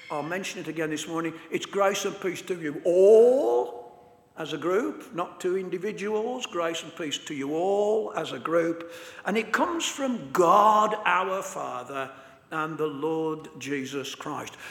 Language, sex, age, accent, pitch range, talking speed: English, male, 60-79, British, 165-225 Hz, 165 wpm